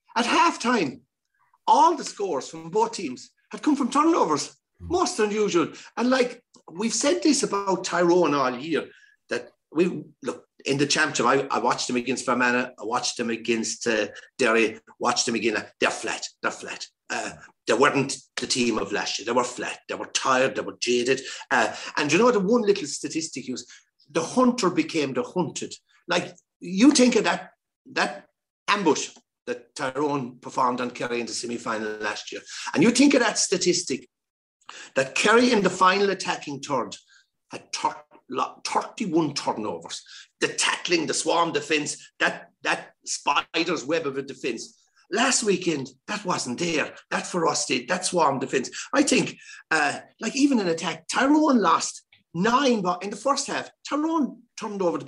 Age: 60-79